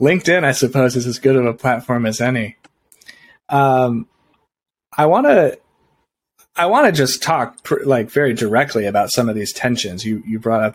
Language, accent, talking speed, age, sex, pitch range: English, American, 185 wpm, 30-49, male, 110-140 Hz